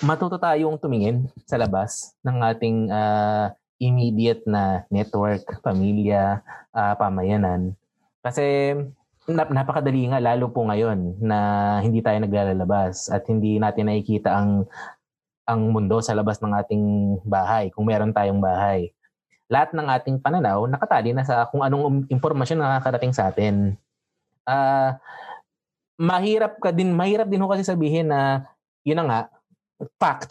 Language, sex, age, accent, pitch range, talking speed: Filipino, male, 20-39, native, 105-150 Hz, 140 wpm